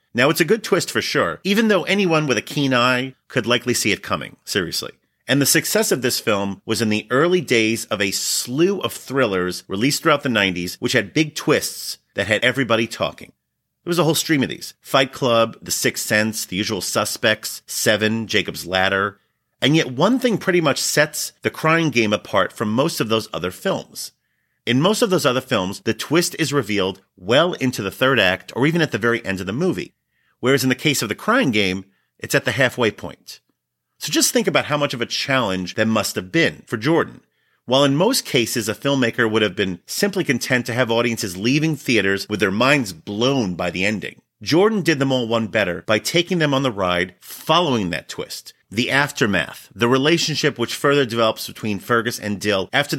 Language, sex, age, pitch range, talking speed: English, male, 40-59, 105-145 Hz, 210 wpm